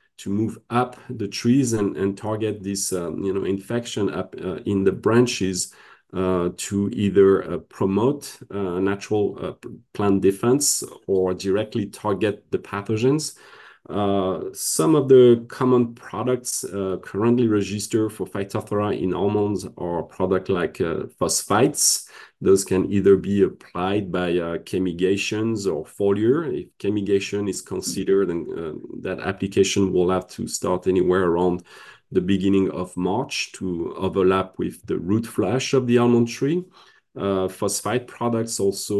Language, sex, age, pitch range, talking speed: English, male, 40-59, 95-110 Hz, 145 wpm